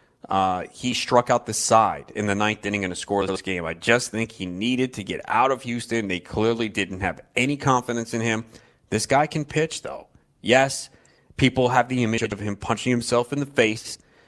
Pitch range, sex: 95-120 Hz, male